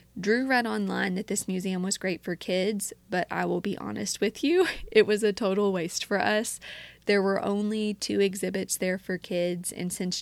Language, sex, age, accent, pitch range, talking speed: English, female, 20-39, American, 175-205 Hz, 200 wpm